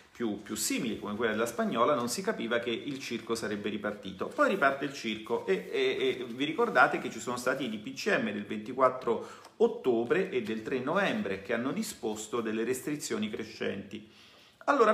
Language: Italian